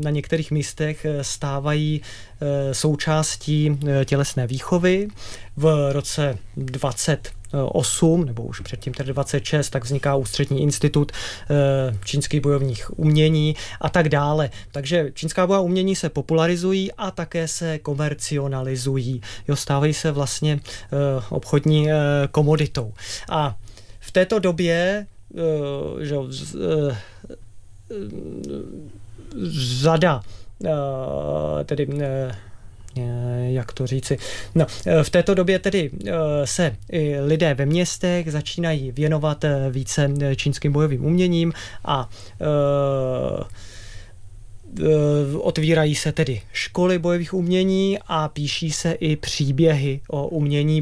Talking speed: 95 wpm